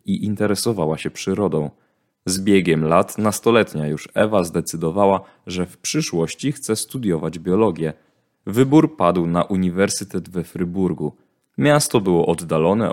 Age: 20-39